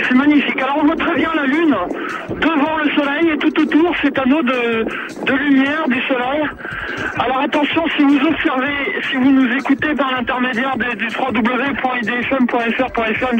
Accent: French